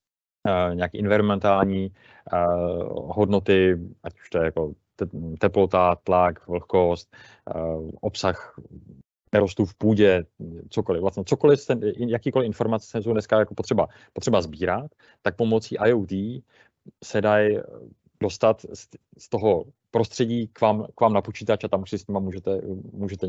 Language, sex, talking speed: Czech, male, 135 wpm